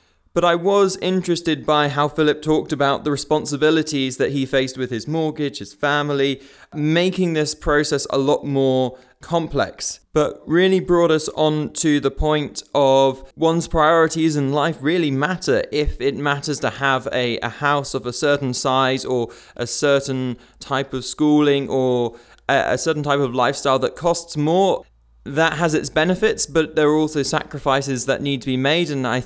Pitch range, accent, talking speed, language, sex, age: 125-150 Hz, British, 175 wpm, English, male, 20-39